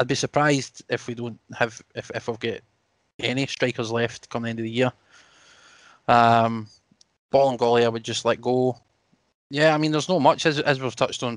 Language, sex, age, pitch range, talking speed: English, male, 20-39, 115-125 Hz, 205 wpm